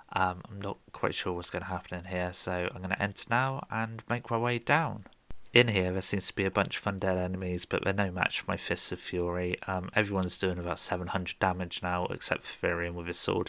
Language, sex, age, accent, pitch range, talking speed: English, male, 30-49, British, 90-105 Hz, 245 wpm